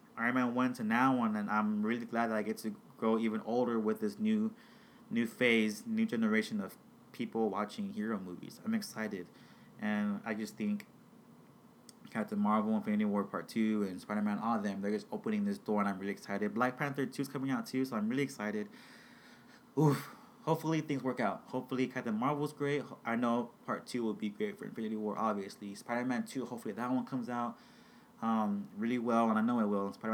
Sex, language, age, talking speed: male, English, 20-39, 205 wpm